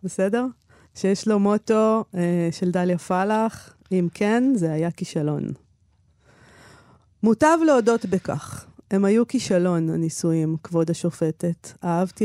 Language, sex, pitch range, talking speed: Hebrew, female, 165-210 Hz, 115 wpm